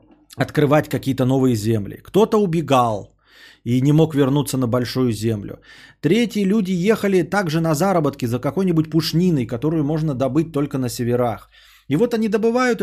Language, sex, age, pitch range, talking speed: Bulgarian, male, 20-39, 135-190 Hz, 150 wpm